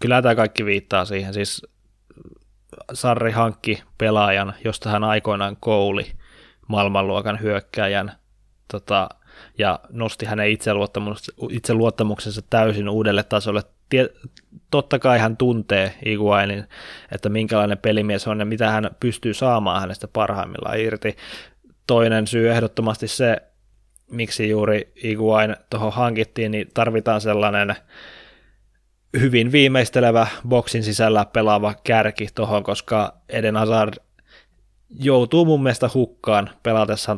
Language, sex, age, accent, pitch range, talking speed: Finnish, male, 20-39, native, 105-115 Hz, 110 wpm